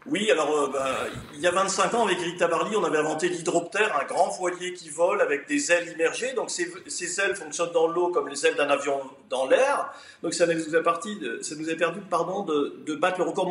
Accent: French